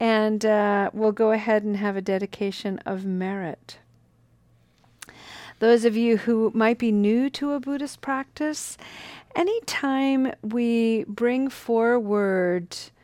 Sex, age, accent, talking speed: female, 40-59, American, 120 wpm